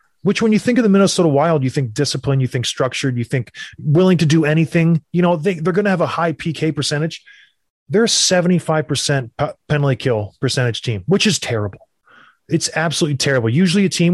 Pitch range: 130-175 Hz